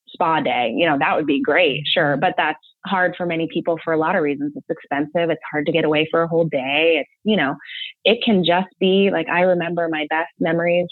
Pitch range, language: 160-215 Hz, English